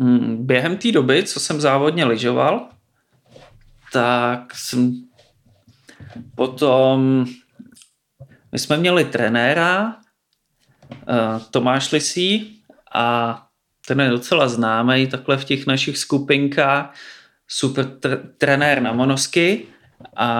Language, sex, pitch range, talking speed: Czech, male, 130-155 Hz, 95 wpm